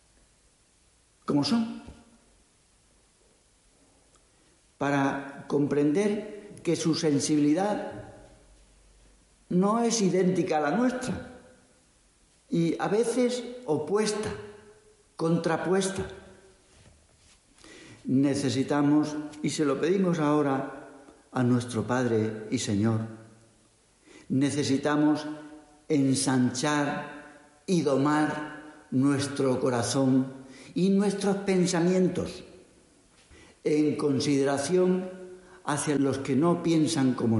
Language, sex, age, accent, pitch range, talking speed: Spanish, male, 60-79, Spanish, 135-180 Hz, 75 wpm